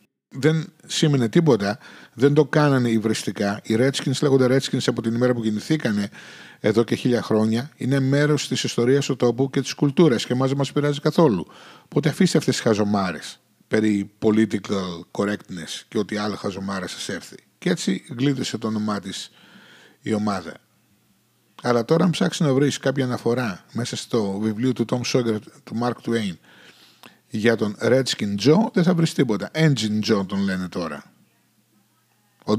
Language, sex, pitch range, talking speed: Greek, male, 110-140 Hz, 165 wpm